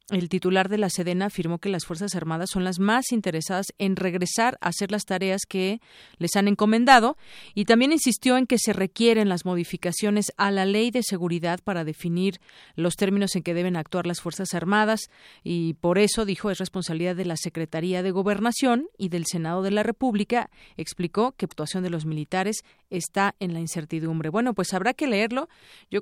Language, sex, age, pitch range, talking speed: Spanish, female, 40-59, 175-210 Hz, 190 wpm